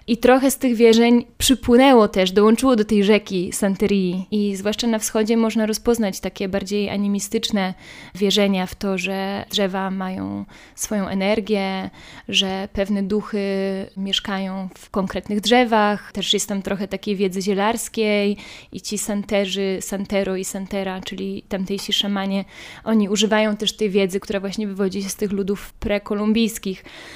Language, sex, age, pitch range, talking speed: Polish, female, 20-39, 195-225 Hz, 145 wpm